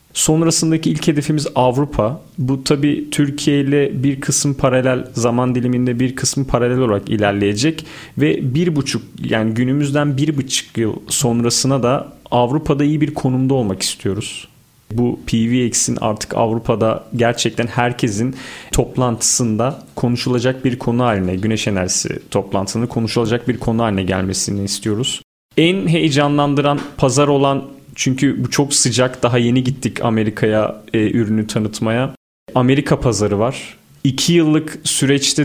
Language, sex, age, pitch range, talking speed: Turkish, male, 40-59, 115-140 Hz, 125 wpm